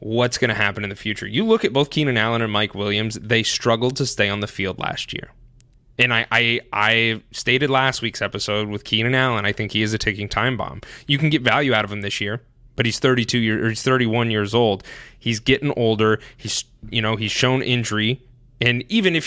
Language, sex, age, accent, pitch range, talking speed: English, male, 20-39, American, 115-150 Hz, 235 wpm